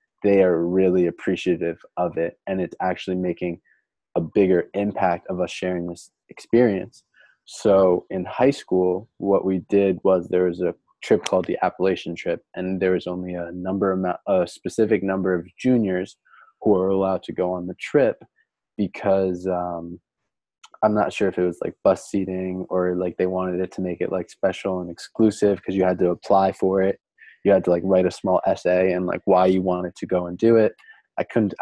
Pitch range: 90-95 Hz